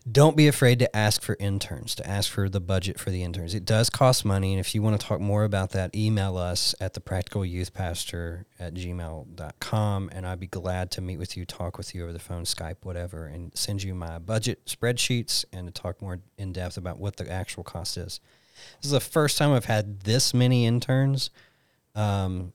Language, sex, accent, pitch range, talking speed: English, male, American, 90-110 Hz, 210 wpm